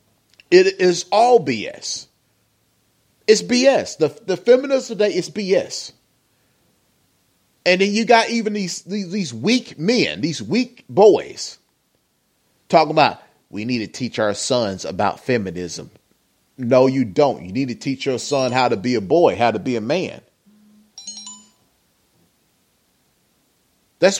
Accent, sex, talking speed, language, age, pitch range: American, male, 135 wpm, English, 30-49, 135-195 Hz